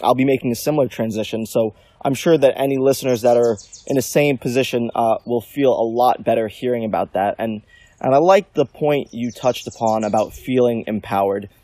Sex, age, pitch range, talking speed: male, 20-39, 110-130 Hz, 200 wpm